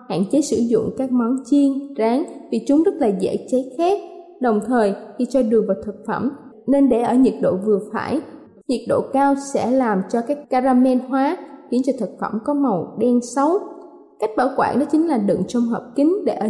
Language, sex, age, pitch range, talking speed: Vietnamese, female, 20-39, 225-295 Hz, 215 wpm